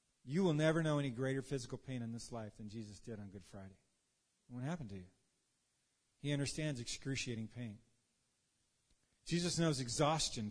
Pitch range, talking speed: 115-145 Hz, 160 wpm